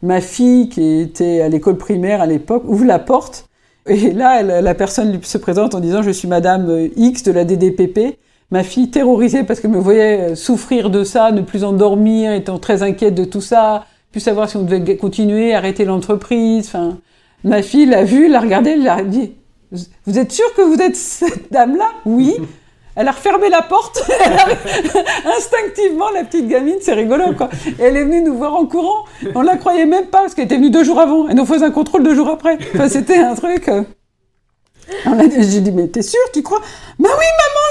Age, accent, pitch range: 50-69, French, 200-290 Hz